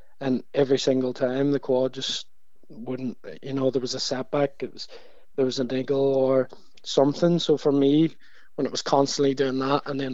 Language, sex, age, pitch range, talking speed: English, male, 20-39, 125-135 Hz, 195 wpm